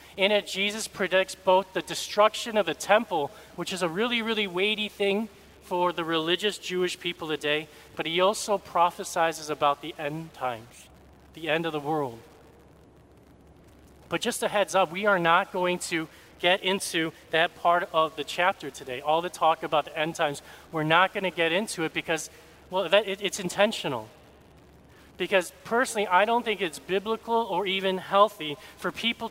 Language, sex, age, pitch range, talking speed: English, male, 40-59, 165-210 Hz, 175 wpm